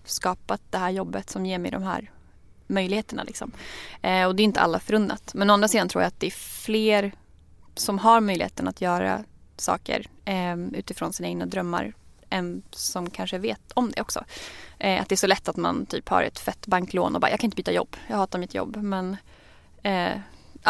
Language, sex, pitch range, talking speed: Swedish, female, 180-210 Hz, 210 wpm